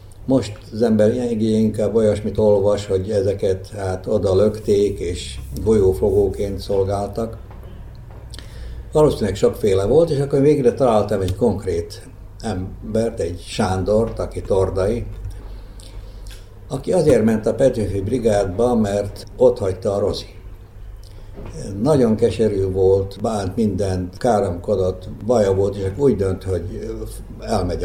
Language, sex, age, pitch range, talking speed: Hungarian, male, 60-79, 95-105 Hz, 115 wpm